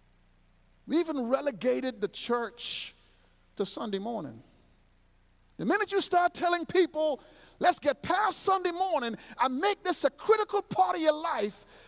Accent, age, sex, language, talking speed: American, 50-69, male, English, 140 wpm